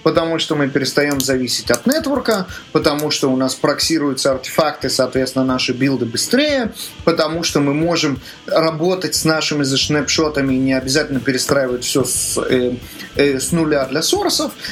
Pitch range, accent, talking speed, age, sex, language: 135-180 Hz, native, 150 wpm, 30-49, male, Russian